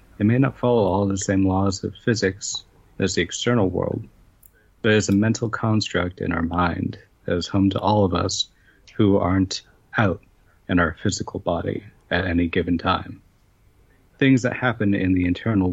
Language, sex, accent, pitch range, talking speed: English, male, American, 90-110 Hz, 175 wpm